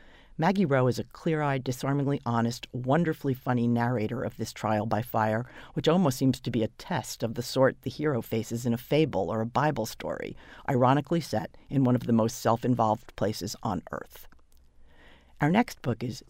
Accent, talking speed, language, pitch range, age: American, 185 wpm, English, 115-140 Hz, 40-59